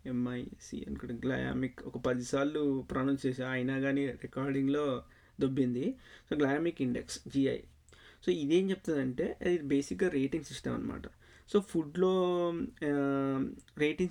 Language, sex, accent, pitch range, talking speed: Telugu, male, native, 130-165 Hz, 110 wpm